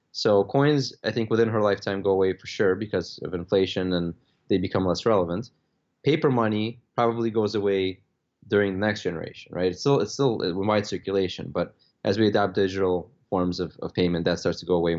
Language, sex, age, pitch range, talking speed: English, male, 20-39, 90-110 Hz, 195 wpm